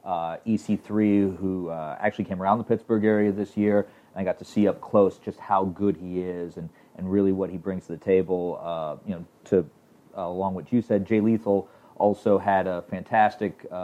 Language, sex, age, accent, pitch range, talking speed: English, male, 30-49, American, 95-110 Hz, 210 wpm